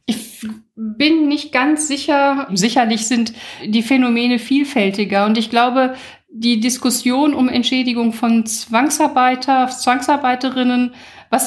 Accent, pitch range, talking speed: German, 225-265 Hz, 110 wpm